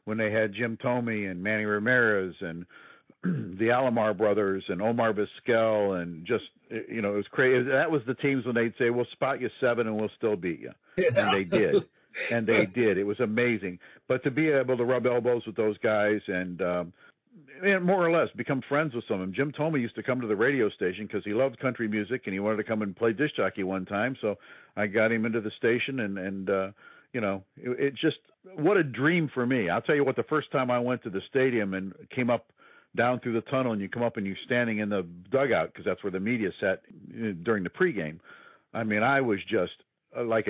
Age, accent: 50-69, American